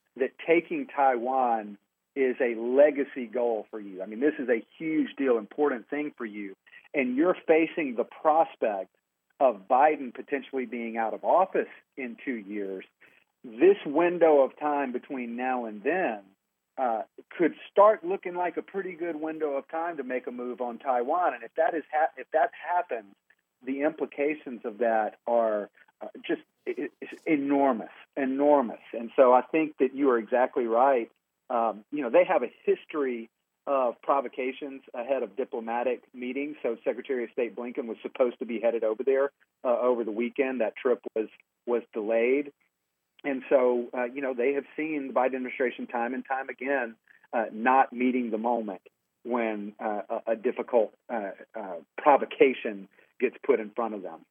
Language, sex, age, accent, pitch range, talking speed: English, male, 50-69, American, 115-145 Hz, 170 wpm